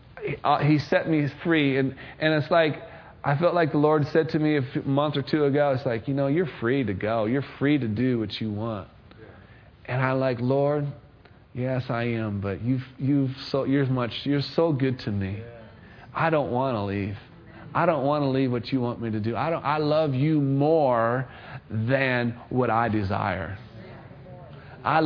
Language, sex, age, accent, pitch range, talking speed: English, male, 40-59, American, 115-150 Hz, 195 wpm